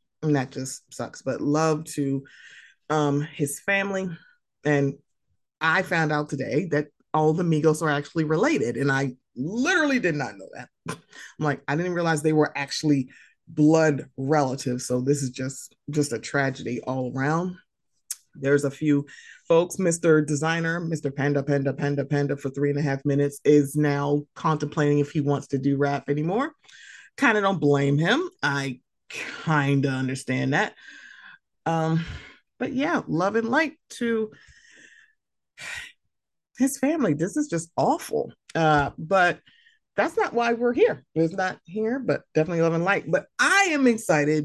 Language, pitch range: English, 140-180 Hz